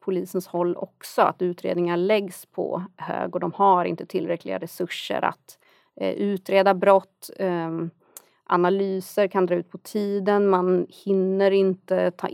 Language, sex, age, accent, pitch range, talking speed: Swedish, female, 30-49, native, 180-200 Hz, 130 wpm